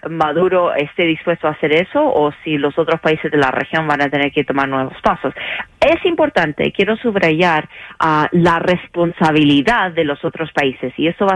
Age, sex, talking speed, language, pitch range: 30-49, female, 185 wpm, English, 145-170 Hz